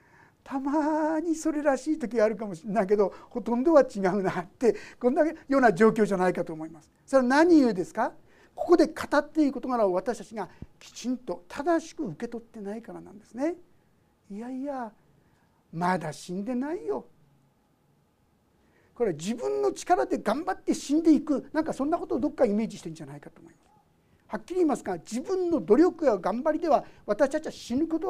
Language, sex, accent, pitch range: Japanese, male, native, 210-315 Hz